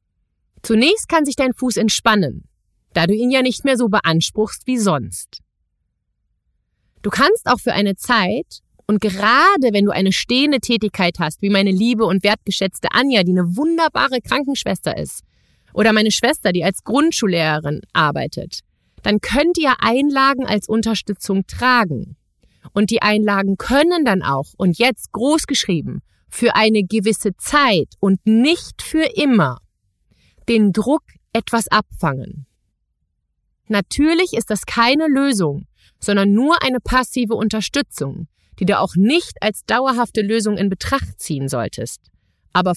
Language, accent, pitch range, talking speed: German, German, 170-260 Hz, 135 wpm